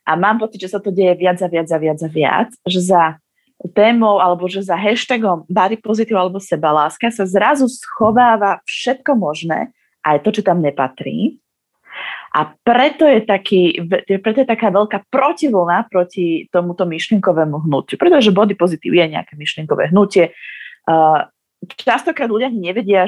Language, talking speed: Slovak, 150 wpm